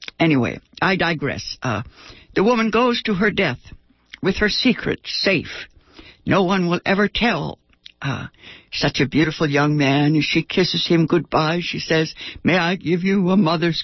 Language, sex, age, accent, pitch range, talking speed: English, female, 60-79, American, 145-205 Hz, 160 wpm